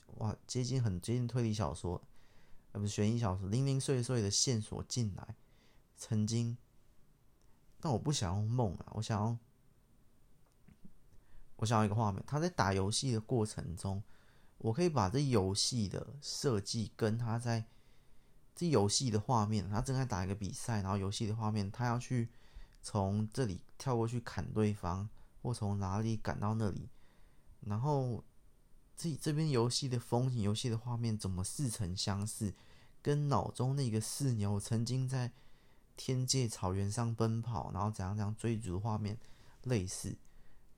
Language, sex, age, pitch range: Chinese, male, 20-39, 105-125 Hz